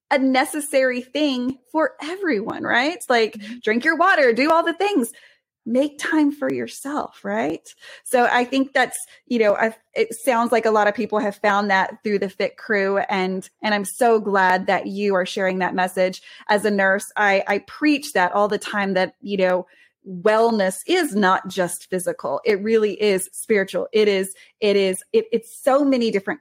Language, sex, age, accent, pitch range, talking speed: English, female, 20-39, American, 195-265 Hz, 180 wpm